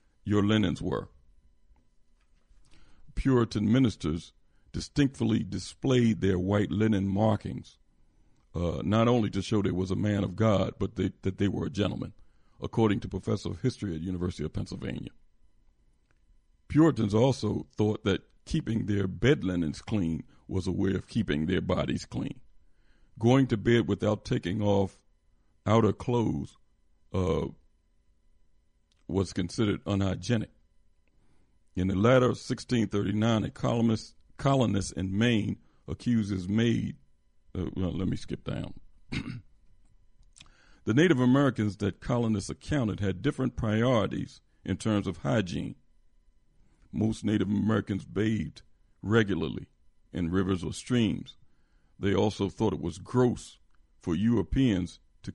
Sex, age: male, 50-69